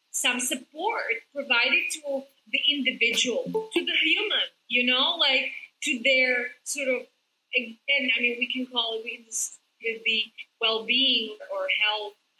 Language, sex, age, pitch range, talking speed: English, female, 30-49, 230-285 Hz, 130 wpm